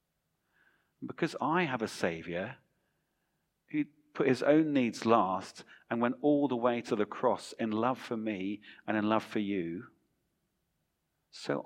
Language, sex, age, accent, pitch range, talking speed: English, male, 40-59, British, 100-120 Hz, 150 wpm